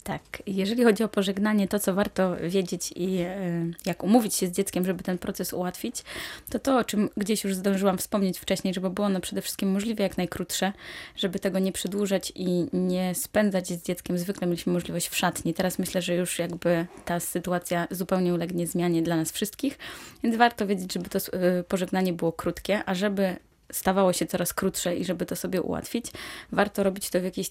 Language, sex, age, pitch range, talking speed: Polish, female, 20-39, 180-205 Hz, 190 wpm